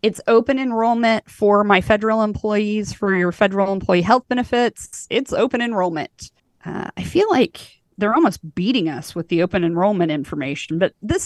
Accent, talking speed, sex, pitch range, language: American, 165 wpm, female, 180-235 Hz, English